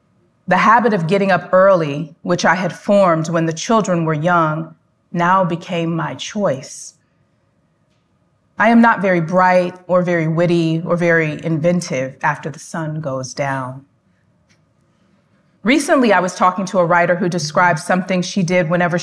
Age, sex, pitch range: 30-49, female, 160-205 Hz